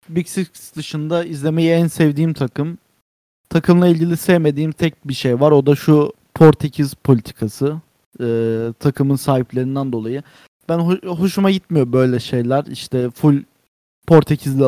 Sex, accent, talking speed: male, native, 125 wpm